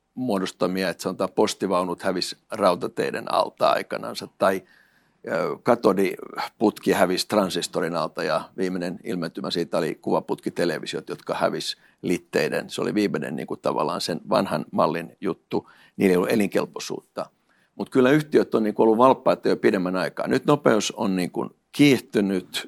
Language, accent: Finnish, native